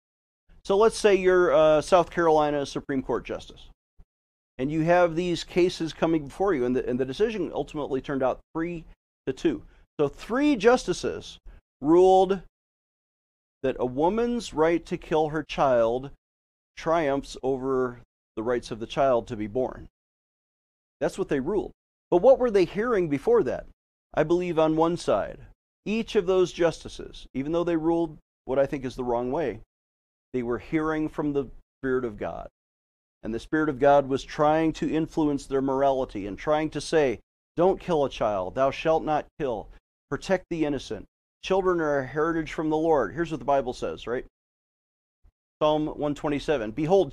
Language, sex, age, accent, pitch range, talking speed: English, male, 40-59, American, 135-195 Hz, 165 wpm